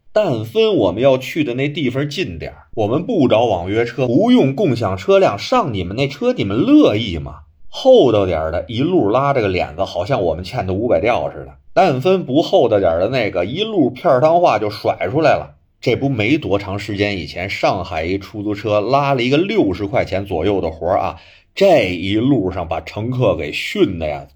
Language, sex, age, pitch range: Chinese, male, 30-49, 90-140 Hz